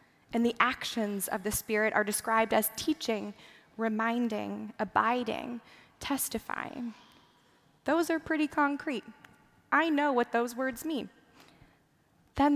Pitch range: 215-265 Hz